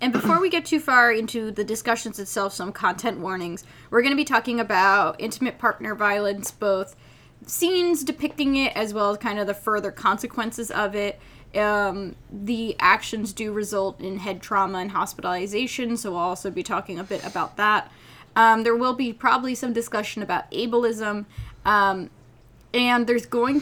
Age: 10-29